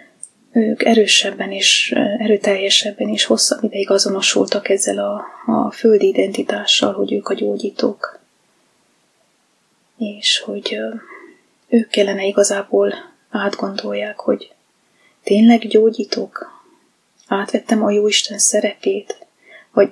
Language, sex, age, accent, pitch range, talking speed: English, female, 20-39, Finnish, 205-240 Hz, 95 wpm